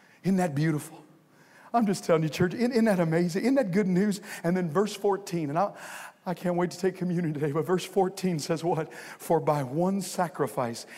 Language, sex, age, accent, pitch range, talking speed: English, male, 50-69, American, 170-225 Hz, 195 wpm